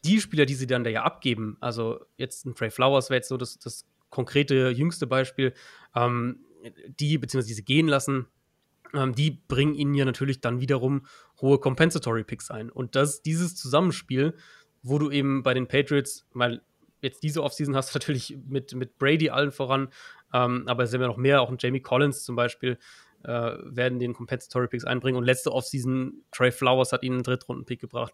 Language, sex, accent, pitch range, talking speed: German, male, German, 125-145 Hz, 185 wpm